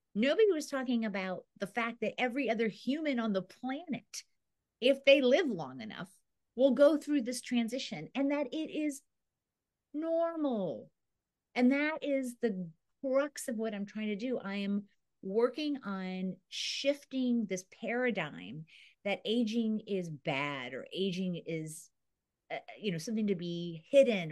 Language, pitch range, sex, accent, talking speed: English, 180-255 Hz, female, American, 150 wpm